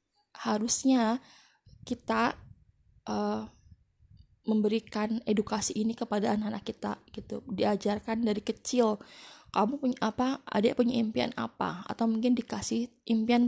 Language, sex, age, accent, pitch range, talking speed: Indonesian, female, 20-39, native, 210-240 Hz, 105 wpm